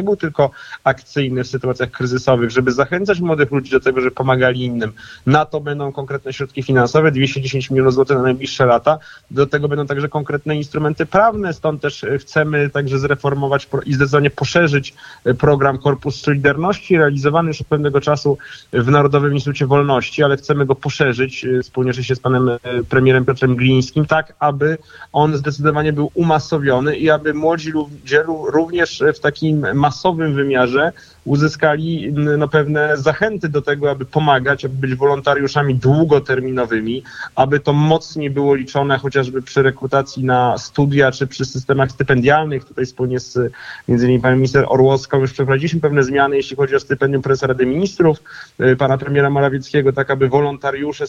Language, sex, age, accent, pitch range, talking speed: Polish, male, 30-49, native, 135-150 Hz, 155 wpm